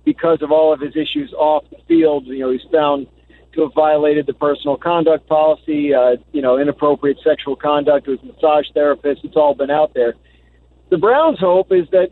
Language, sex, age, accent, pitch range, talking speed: English, male, 50-69, American, 145-165 Hz, 195 wpm